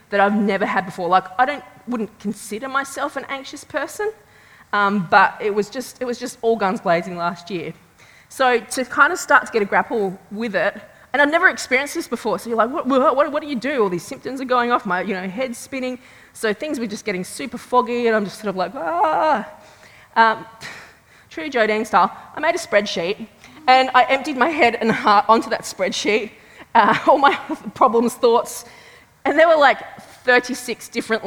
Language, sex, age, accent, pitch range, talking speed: English, female, 20-39, Australian, 195-255 Hz, 205 wpm